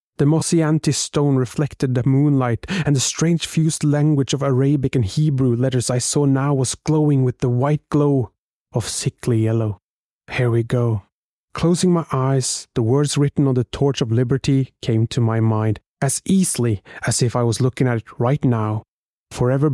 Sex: male